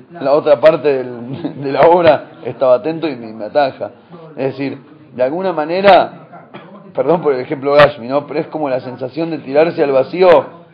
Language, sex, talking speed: Spanish, male, 190 wpm